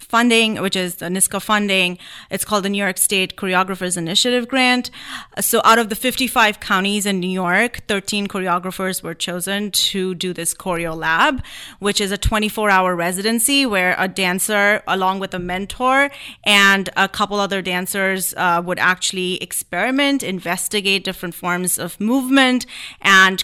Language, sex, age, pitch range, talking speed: English, female, 30-49, 180-215 Hz, 155 wpm